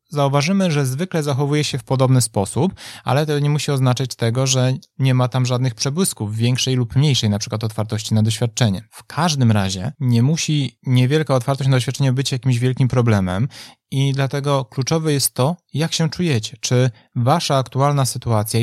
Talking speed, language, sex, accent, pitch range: 170 wpm, Polish, male, native, 125-145 Hz